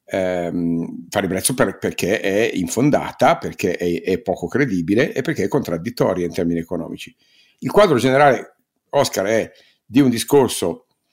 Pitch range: 85-105 Hz